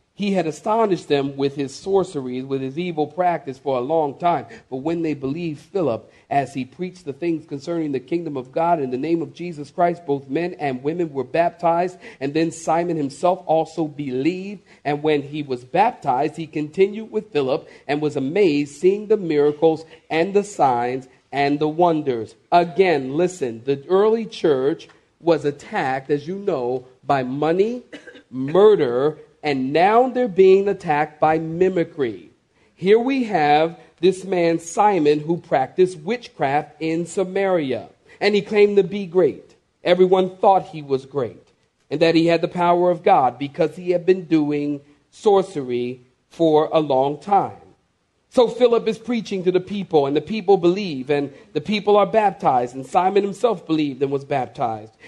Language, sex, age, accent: English, male, 40-59, American